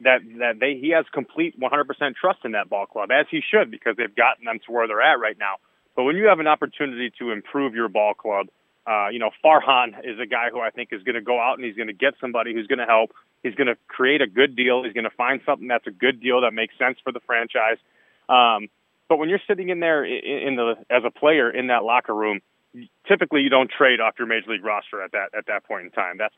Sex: male